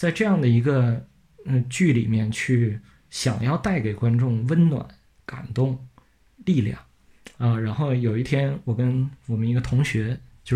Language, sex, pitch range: Chinese, male, 115-150 Hz